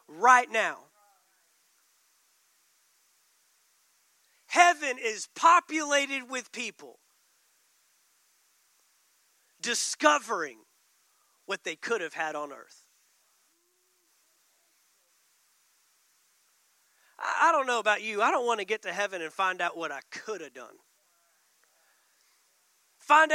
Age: 40-59